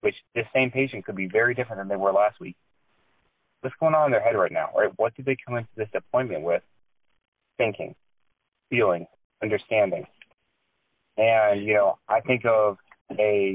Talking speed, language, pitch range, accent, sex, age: 175 wpm, English, 105-125 Hz, American, male, 20-39